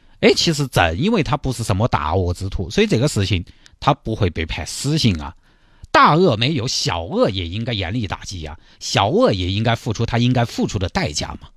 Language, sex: Chinese, male